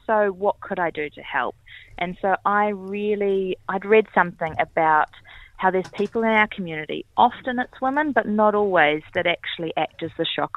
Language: English